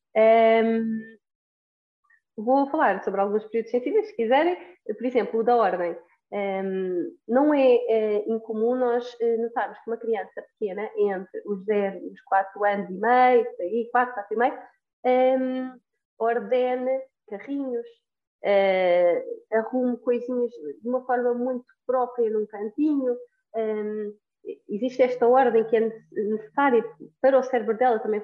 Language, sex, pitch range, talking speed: Portuguese, female, 215-265 Hz, 135 wpm